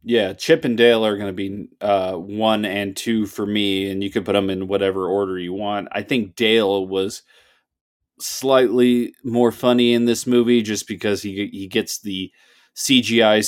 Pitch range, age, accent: 100-120 Hz, 30-49, American